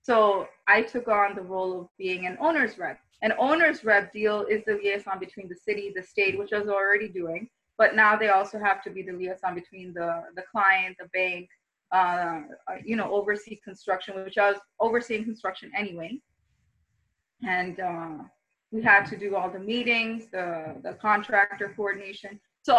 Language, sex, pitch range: English, female, 185-215 Hz